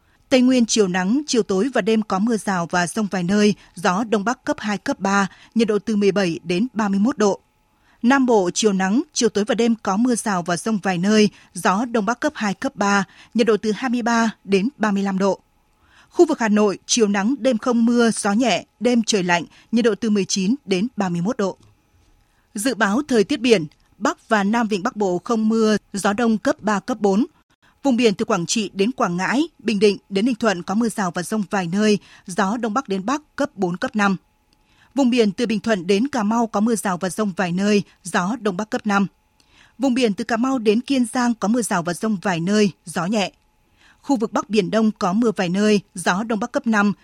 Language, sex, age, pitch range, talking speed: Vietnamese, female, 20-39, 195-240 Hz, 225 wpm